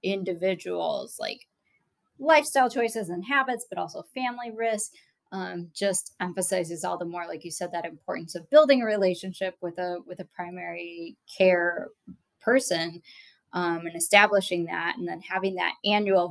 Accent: American